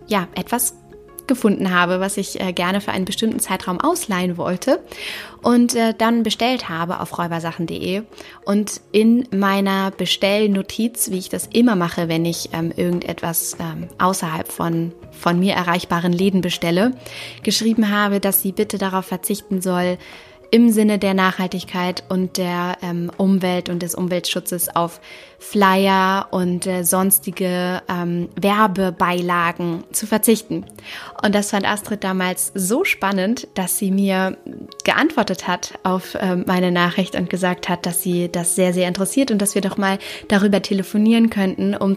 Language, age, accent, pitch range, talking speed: German, 20-39, German, 180-200 Hz, 135 wpm